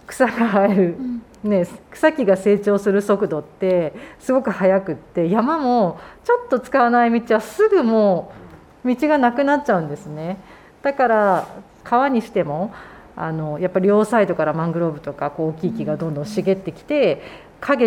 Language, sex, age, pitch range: Japanese, female, 40-59, 170-235 Hz